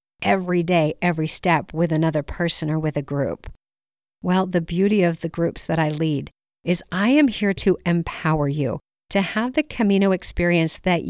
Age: 50-69